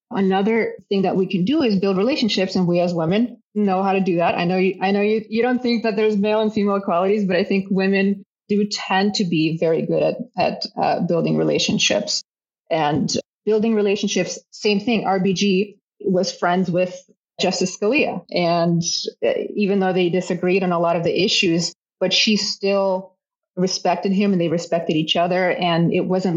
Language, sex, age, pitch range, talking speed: English, female, 30-49, 180-210 Hz, 190 wpm